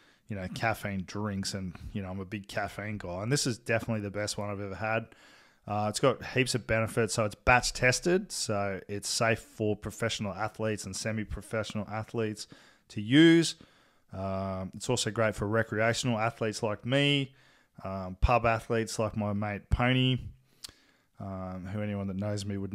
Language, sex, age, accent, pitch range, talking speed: English, male, 20-39, Australian, 100-120 Hz, 175 wpm